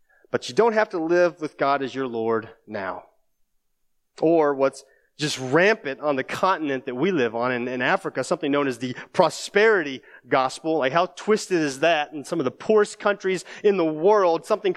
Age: 30-49